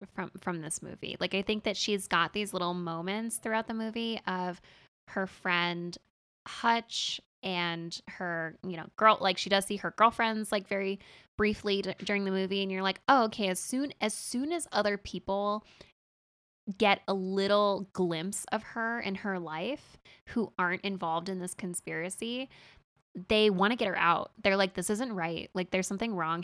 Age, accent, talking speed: 10-29, American, 180 wpm